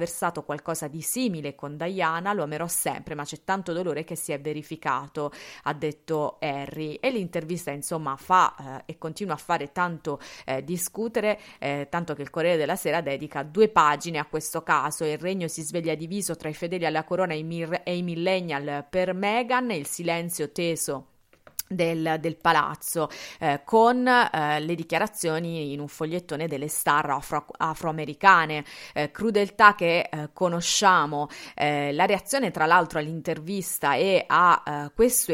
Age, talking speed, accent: 30-49, 160 wpm, native